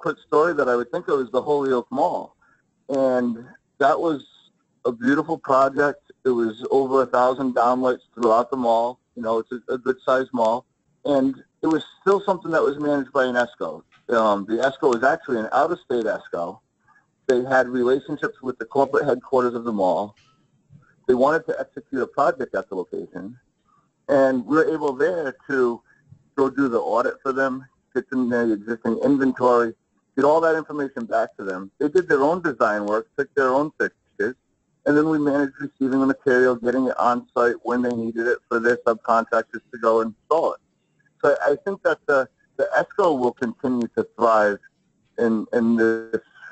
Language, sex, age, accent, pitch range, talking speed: English, male, 50-69, American, 115-140 Hz, 185 wpm